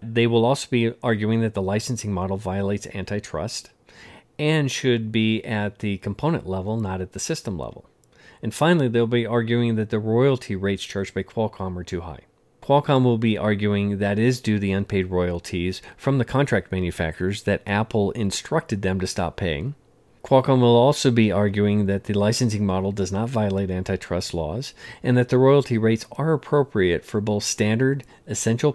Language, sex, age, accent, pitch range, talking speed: English, male, 40-59, American, 95-120 Hz, 175 wpm